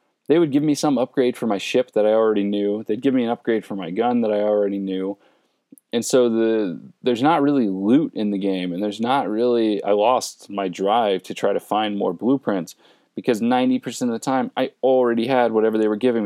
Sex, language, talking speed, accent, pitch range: male, English, 225 wpm, American, 100-125 Hz